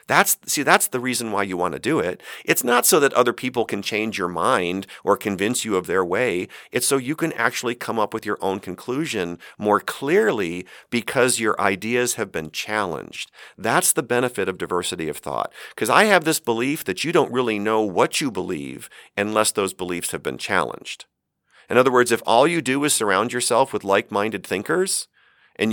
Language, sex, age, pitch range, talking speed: English, male, 50-69, 100-130 Hz, 200 wpm